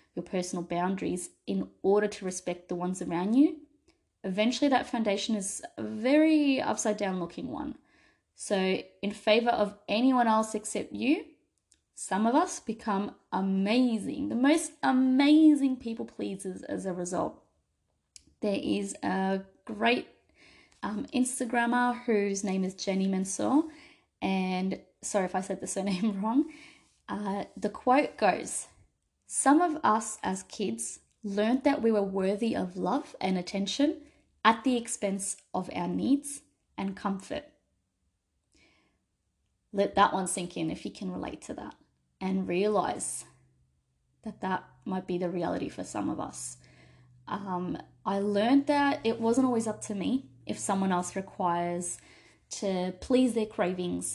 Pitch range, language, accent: 180-245 Hz, English, Australian